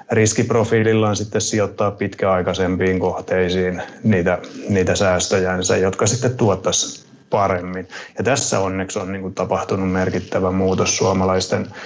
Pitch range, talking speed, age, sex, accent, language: 95-100 Hz, 105 wpm, 30-49, male, native, Finnish